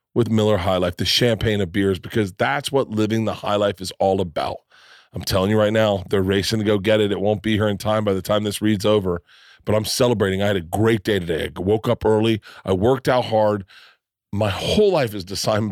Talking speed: 240 wpm